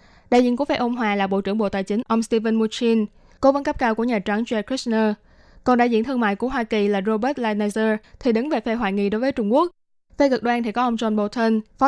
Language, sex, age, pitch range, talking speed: Vietnamese, female, 20-39, 210-250 Hz, 275 wpm